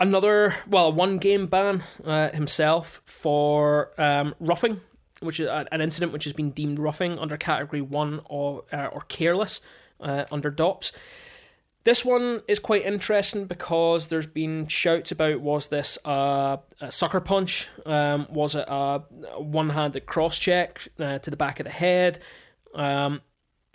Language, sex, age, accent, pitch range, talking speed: English, male, 20-39, British, 150-180 Hz, 150 wpm